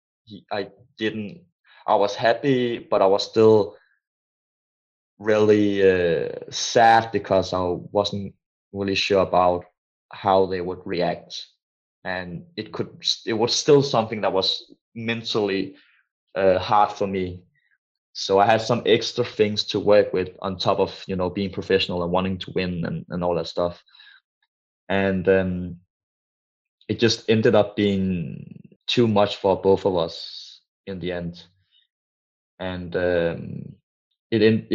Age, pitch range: 20-39, 90-105 Hz